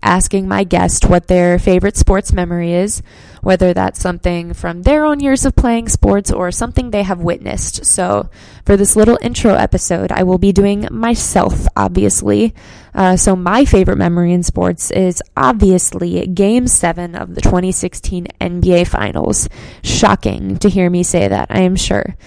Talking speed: 165 wpm